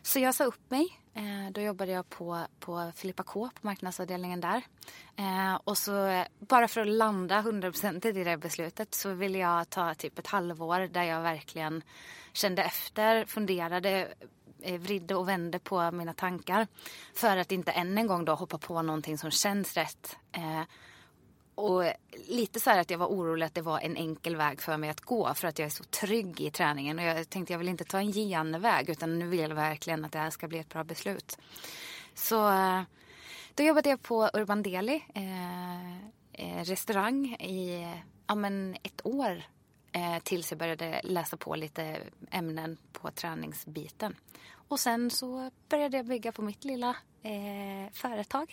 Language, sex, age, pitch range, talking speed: Swedish, female, 20-39, 170-215 Hz, 175 wpm